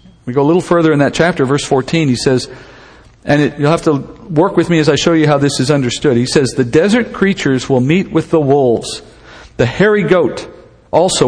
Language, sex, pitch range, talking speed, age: English, male, 125-160 Hz, 220 wpm, 50-69